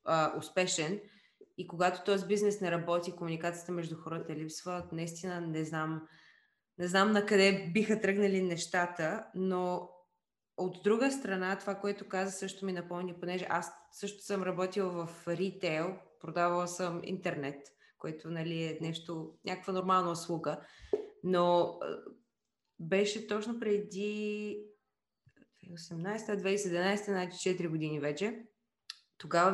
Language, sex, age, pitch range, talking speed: Bulgarian, female, 20-39, 165-200 Hz, 115 wpm